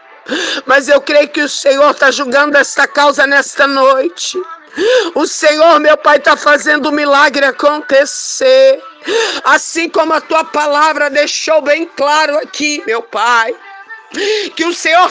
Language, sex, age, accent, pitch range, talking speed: Portuguese, female, 50-69, Brazilian, 275-390 Hz, 140 wpm